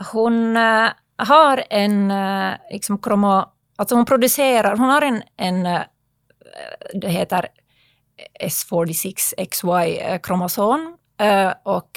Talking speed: 85 wpm